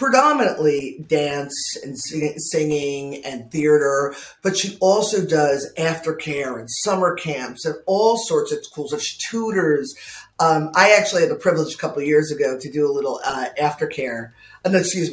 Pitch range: 130-165 Hz